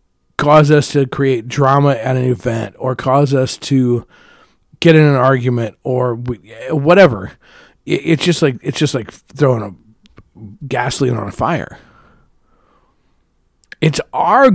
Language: English